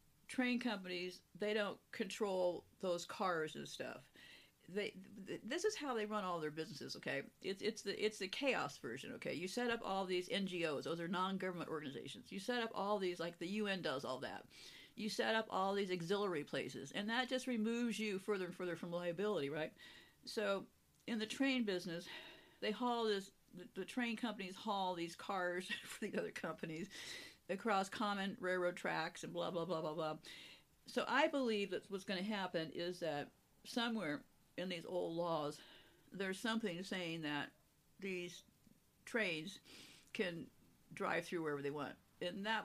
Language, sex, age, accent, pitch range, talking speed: English, female, 50-69, American, 175-215 Hz, 175 wpm